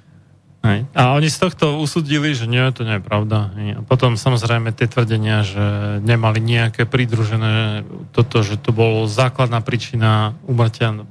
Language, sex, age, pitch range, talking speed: Slovak, male, 30-49, 115-145 Hz, 150 wpm